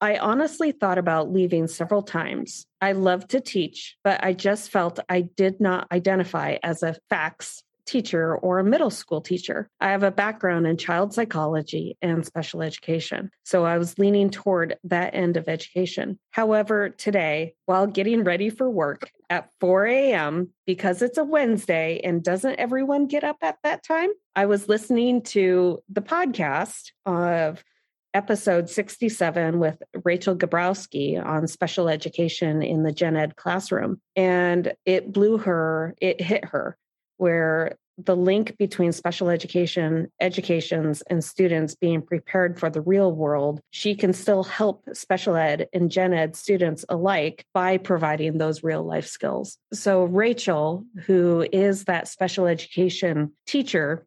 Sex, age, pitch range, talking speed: female, 30-49, 165-200 Hz, 150 wpm